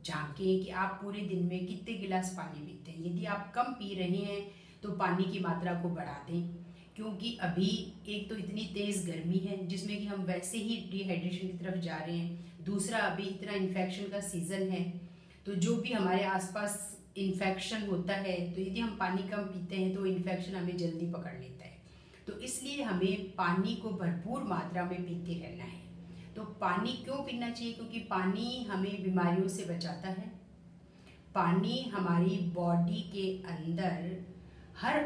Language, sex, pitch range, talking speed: Hindi, female, 175-200 Hz, 175 wpm